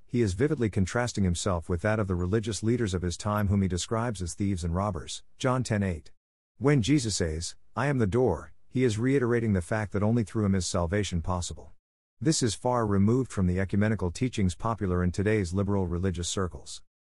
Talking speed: 195 wpm